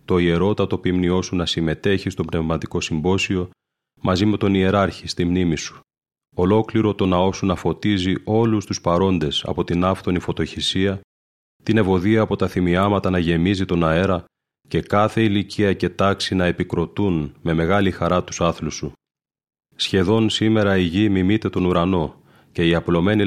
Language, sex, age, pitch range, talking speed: Greek, male, 30-49, 85-100 Hz, 155 wpm